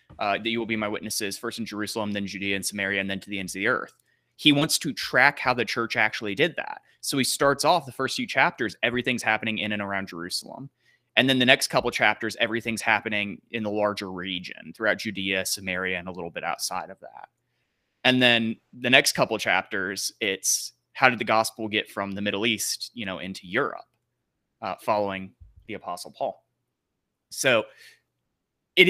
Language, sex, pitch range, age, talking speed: English, male, 105-130 Hz, 20-39, 195 wpm